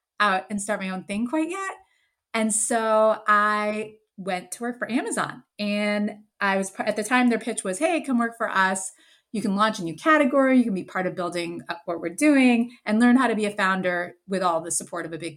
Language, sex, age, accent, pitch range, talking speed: English, female, 30-49, American, 185-235 Hz, 230 wpm